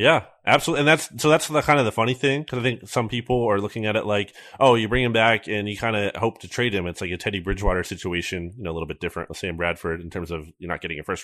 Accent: American